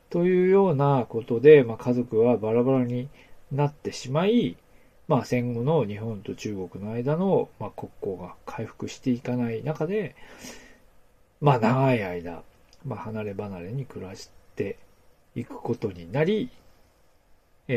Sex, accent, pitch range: male, native, 100-145 Hz